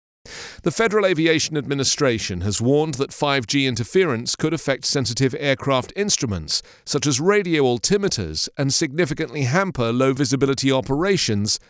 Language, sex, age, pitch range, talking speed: English, male, 40-59, 110-155 Hz, 120 wpm